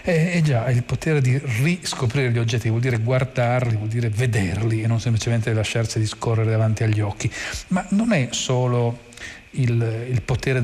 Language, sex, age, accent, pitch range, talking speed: Italian, male, 40-59, native, 115-150 Hz, 165 wpm